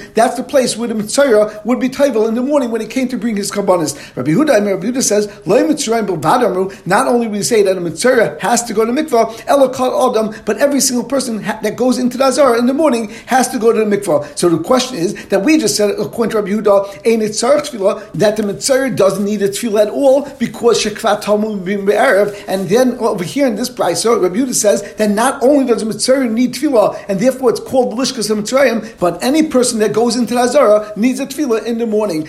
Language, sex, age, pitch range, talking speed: English, male, 50-69, 210-255 Hz, 215 wpm